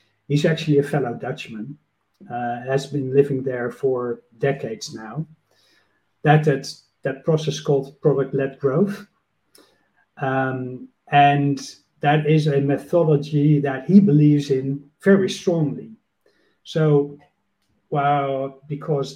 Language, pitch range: English, 130-150 Hz